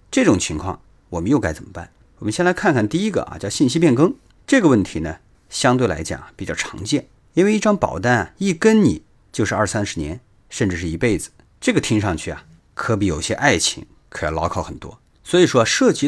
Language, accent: Chinese, native